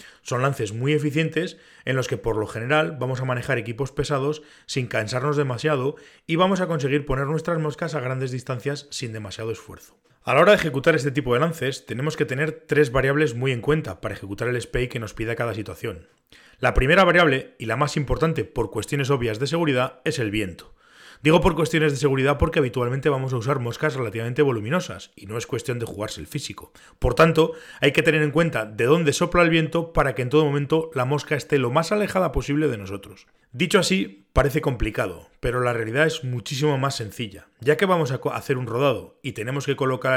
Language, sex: Spanish, male